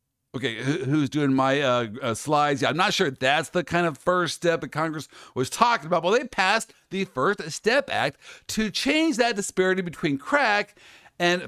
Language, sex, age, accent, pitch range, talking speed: English, male, 50-69, American, 135-220 Hz, 190 wpm